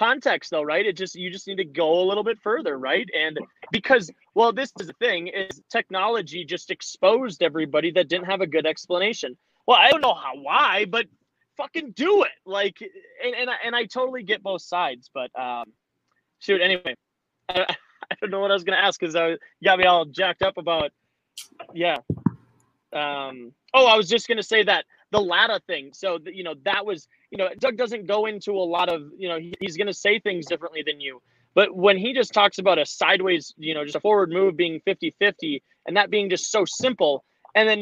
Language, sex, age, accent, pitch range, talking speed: English, male, 20-39, American, 170-210 Hz, 215 wpm